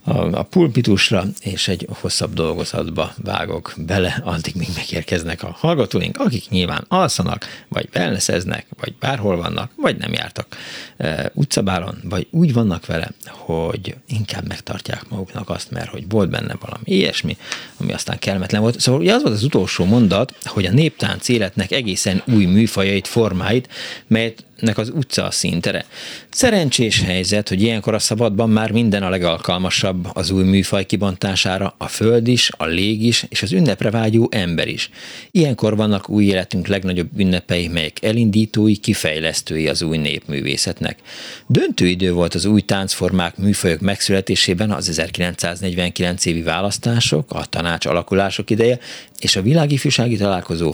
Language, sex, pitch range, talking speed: Hungarian, male, 90-110 Hz, 145 wpm